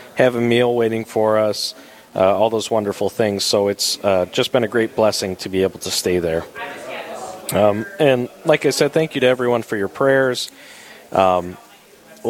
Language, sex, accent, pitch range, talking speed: English, male, American, 100-130 Hz, 185 wpm